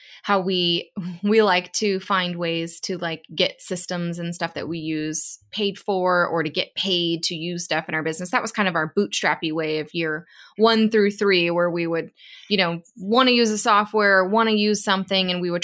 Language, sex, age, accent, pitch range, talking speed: English, female, 20-39, American, 175-220 Hz, 220 wpm